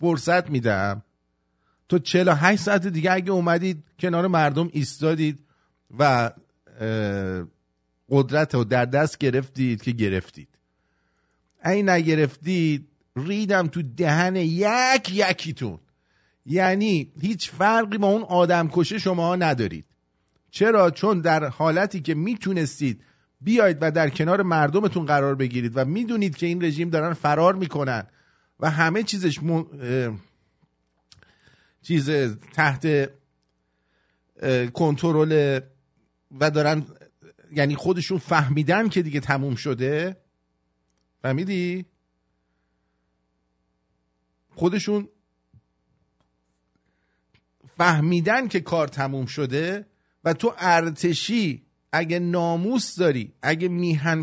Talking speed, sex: 100 wpm, male